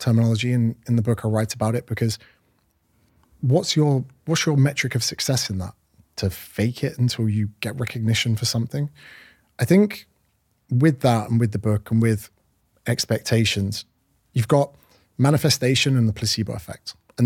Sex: male